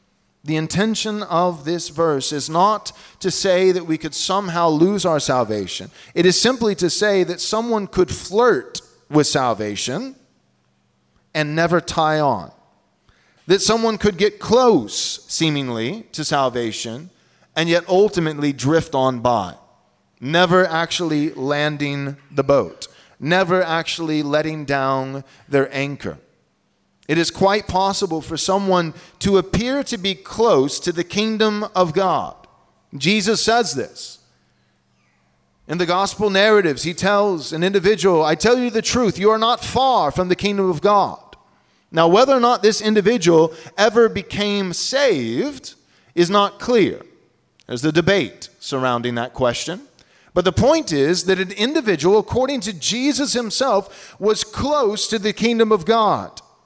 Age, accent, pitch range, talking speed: 30-49, American, 150-210 Hz, 140 wpm